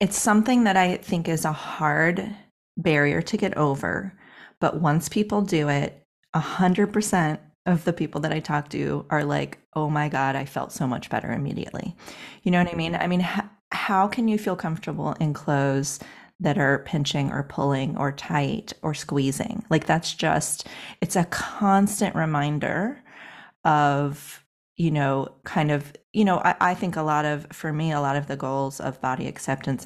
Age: 30-49